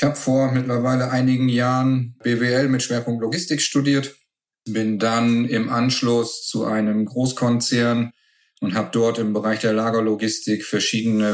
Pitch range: 110-135 Hz